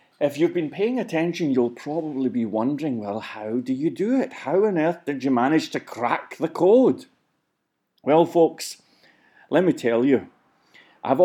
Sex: male